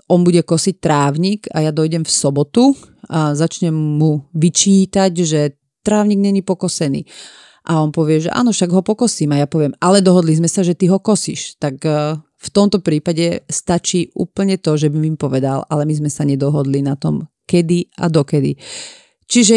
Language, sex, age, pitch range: Slovak, female, 40-59, 150-185 Hz